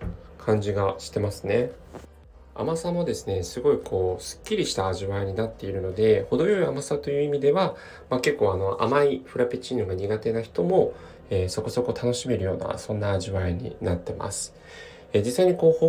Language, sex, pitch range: Japanese, male, 95-140 Hz